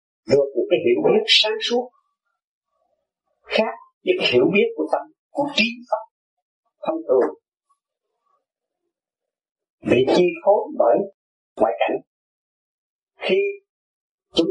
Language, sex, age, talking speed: Vietnamese, male, 50-69, 110 wpm